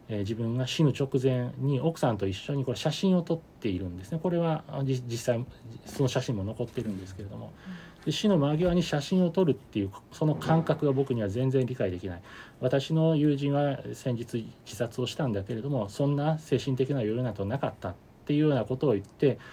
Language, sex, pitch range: Japanese, male, 105-145 Hz